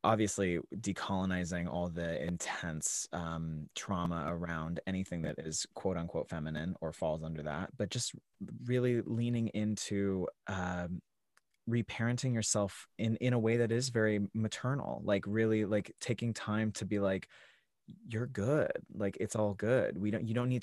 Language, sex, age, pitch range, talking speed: English, male, 20-39, 90-110 Hz, 155 wpm